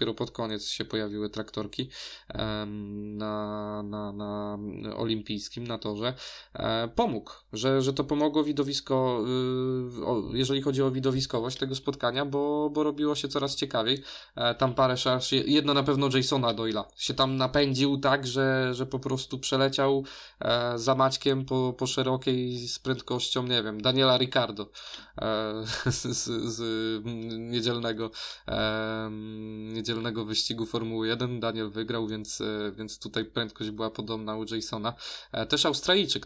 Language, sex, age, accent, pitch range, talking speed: Polish, male, 20-39, native, 110-135 Hz, 130 wpm